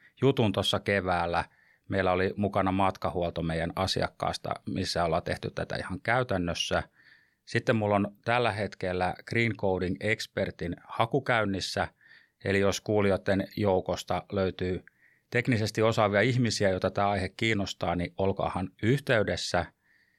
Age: 30-49